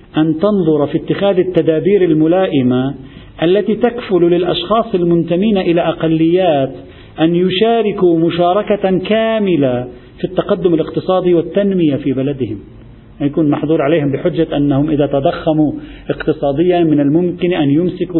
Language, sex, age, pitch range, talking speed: Arabic, male, 50-69, 140-200 Hz, 110 wpm